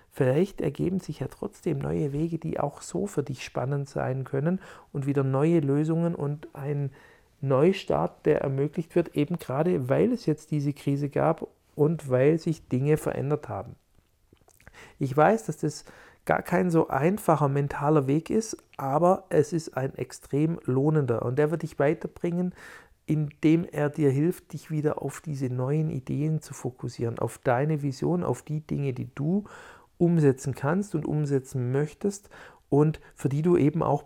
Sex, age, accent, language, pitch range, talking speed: male, 50-69, German, German, 140-170 Hz, 160 wpm